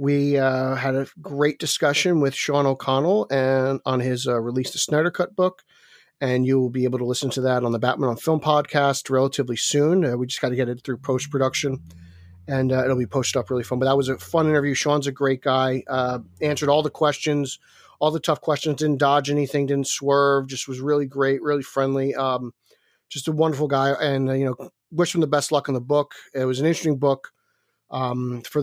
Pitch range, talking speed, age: 130-150 Hz, 220 wpm, 30-49